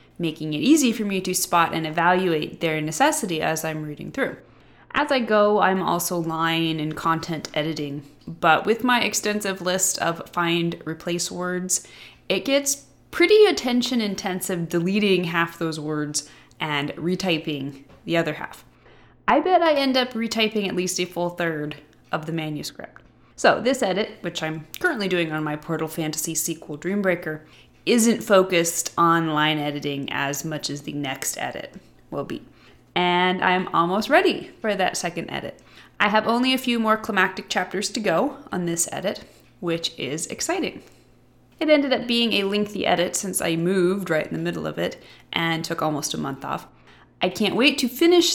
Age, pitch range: 20-39, 160-215 Hz